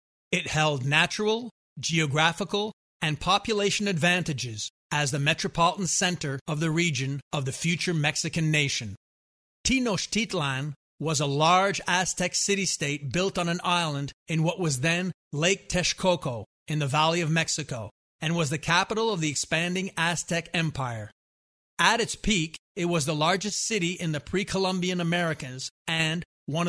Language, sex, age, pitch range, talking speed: English, male, 30-49, 145-180 Hz, 140 wpm